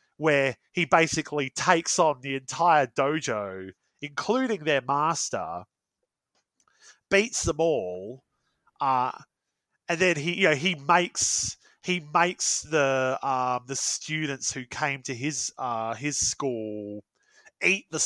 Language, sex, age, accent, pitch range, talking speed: English, male, 30-49, Australian, 130-180 Hz, 125 wpm